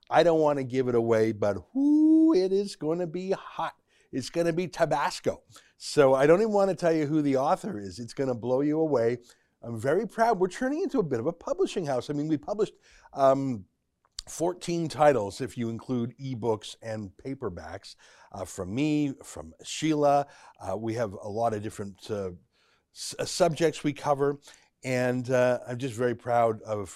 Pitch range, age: 115-165 Hz, 50-69